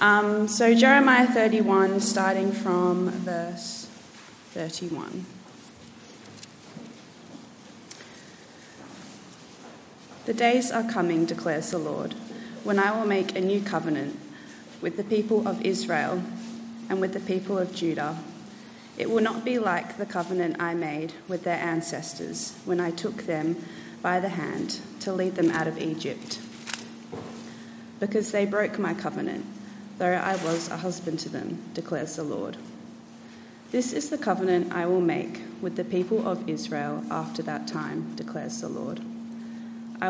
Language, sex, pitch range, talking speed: English, female, 175-225 Hz, 140 wpm